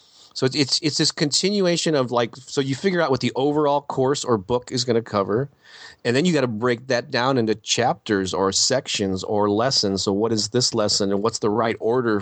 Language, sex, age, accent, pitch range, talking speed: English, male, 30-49, American, 105-130 Hz, 230 wpm